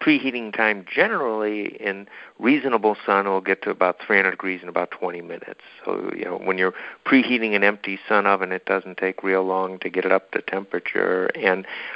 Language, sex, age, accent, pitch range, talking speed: English, male, 60-79, American, 95-105 Hz, 190 wpm